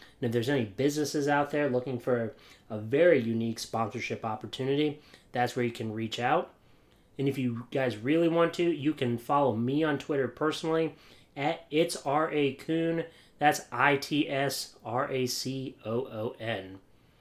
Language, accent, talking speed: English, American, 135 wpm